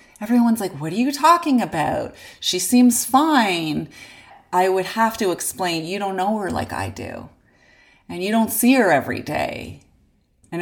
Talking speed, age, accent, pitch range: 170 wpm, 30-49, American, 165-215 Hz